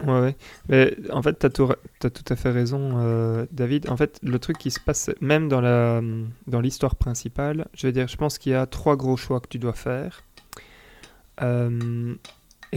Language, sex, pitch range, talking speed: French, male, 120-140 Hz, 205 wpm